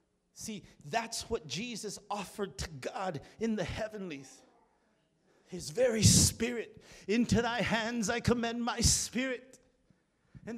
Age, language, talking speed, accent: 50-69, English, 120 wpm, American